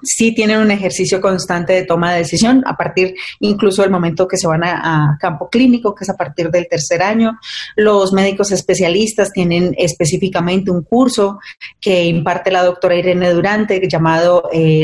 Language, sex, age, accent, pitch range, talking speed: Spanish, female, 30-49, Colombian, 175-210 Hz, 175 wpm